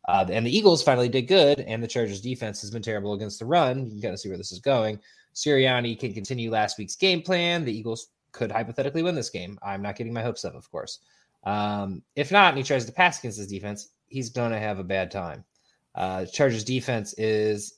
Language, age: English, 20-39